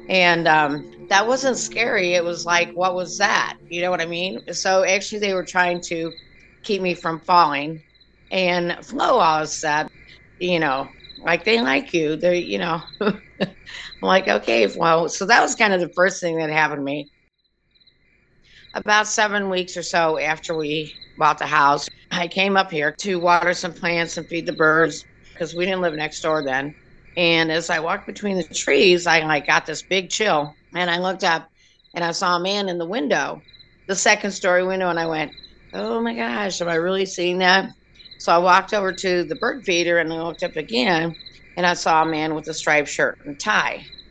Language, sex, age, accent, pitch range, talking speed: English, female, 50-69, American, 155-190 Hz, 200 wpm